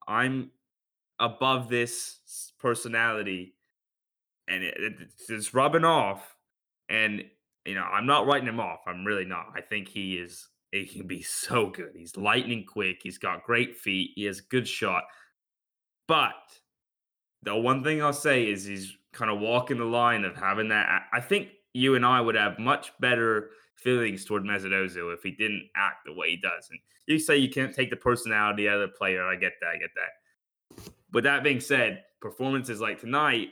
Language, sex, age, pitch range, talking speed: English, male, 10-29, 100-125 Hz, 180 wpm